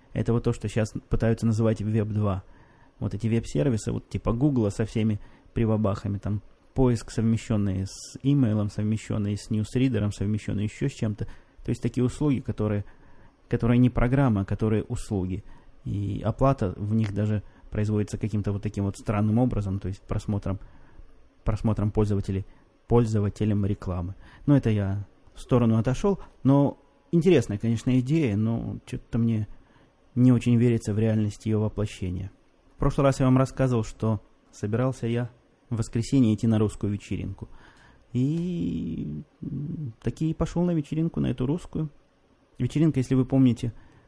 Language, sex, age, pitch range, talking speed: Russian, male, 20-39, 105-135 Hz, 145 wpm